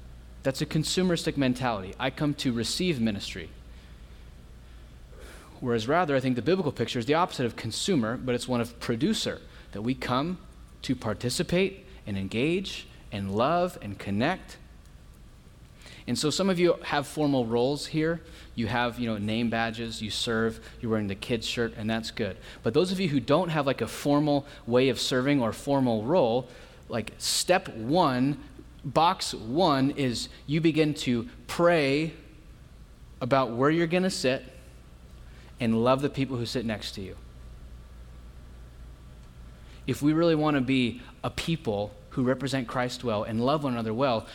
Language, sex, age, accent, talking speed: English, male, 30-49, American, 160 wpm